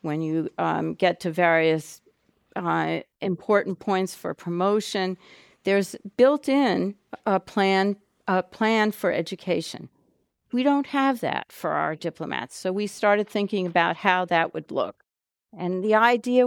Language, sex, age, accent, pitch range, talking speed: English, female, 50-69, American, 180-215 Hz, 140 wpm